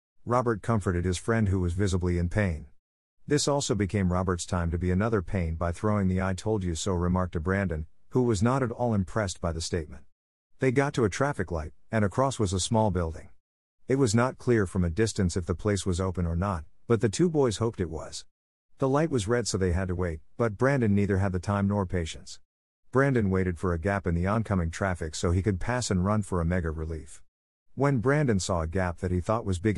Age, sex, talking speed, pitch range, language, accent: 50-69, male, 235 wpm, 85-110 Hz, English, American